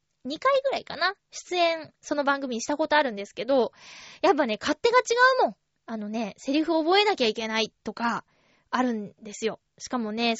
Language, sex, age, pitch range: Japanese, female, 20-39, 240-345 Hz